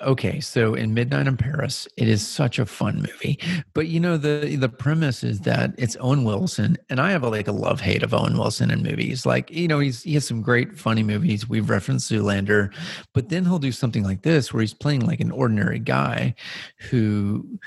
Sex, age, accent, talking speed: male, 40-59, American, 215 wpm